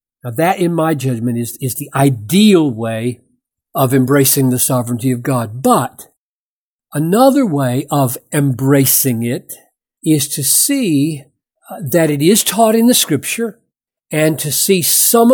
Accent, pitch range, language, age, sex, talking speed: American, 145-210 Hz, English, 60-79, male, 145 wpm